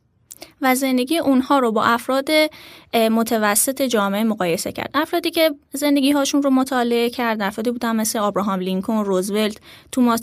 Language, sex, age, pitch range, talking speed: Persian, female, 10-29, 210-265 Hz, 140 wpm